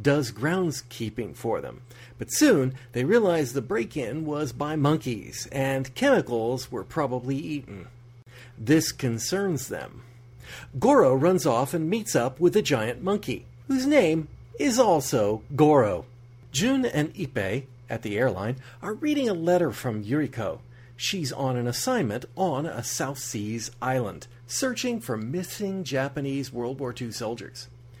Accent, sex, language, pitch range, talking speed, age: American, male, English, 120-175 Hz, 140 wpm, 40-59